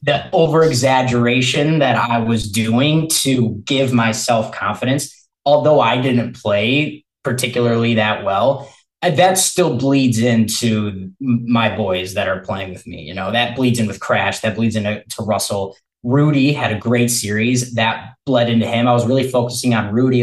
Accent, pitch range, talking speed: American, 105-130 Hz, 165 wpm